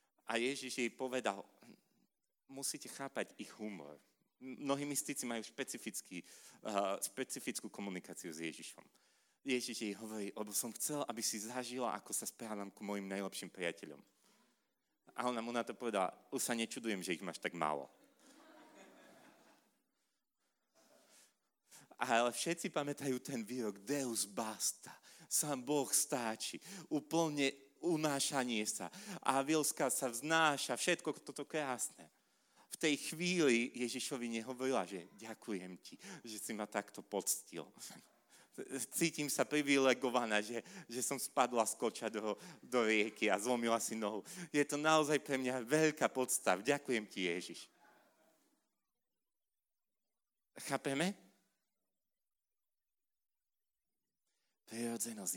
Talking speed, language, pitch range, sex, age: 115 wpm, Slovak, 110-145 Hz, male, 40-59